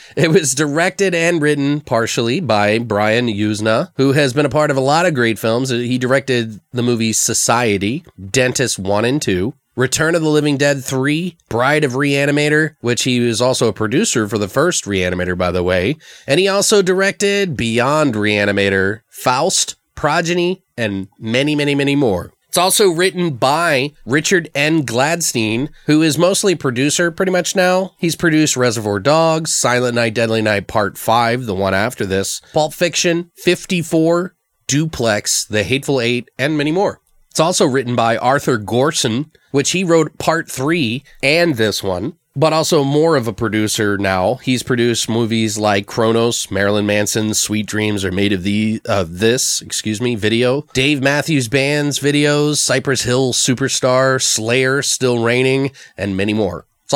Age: 30-49